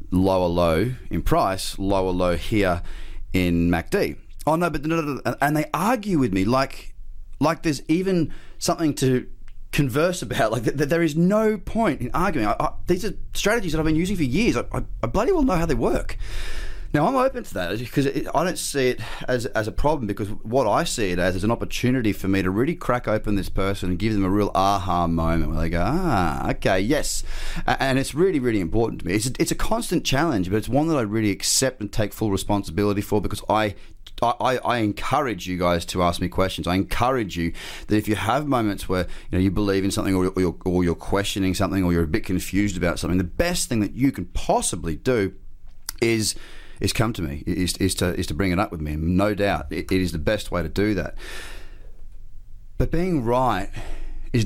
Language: English